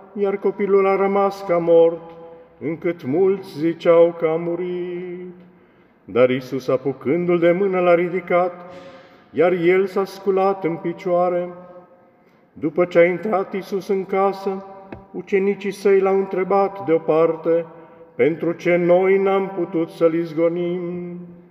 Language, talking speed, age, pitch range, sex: Romanian, 130 wpm, 50-69, 165-190 Hz, male